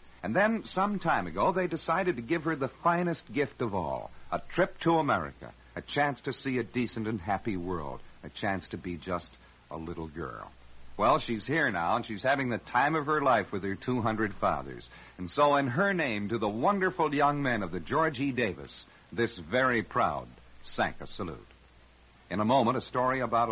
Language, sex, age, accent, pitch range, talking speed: English, male, 60-79, American, 95-145 Hz, 200 wpm